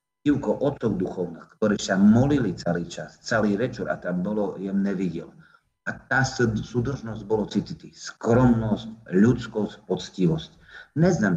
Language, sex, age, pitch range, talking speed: Slovak, male, 50-69, 100-125 Hz, 125 wpm